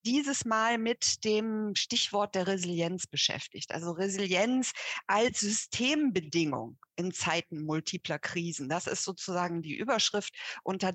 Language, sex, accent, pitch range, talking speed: German, female, German, 175-215 Hz, 120 wpm